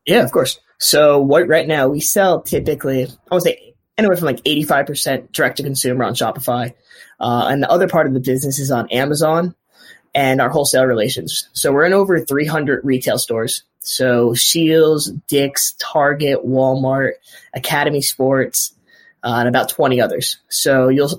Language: English